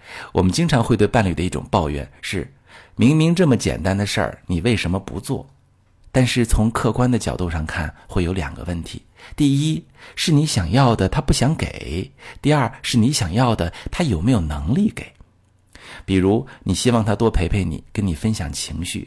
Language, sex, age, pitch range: Chinese, male, 50-69, 90-120 Hz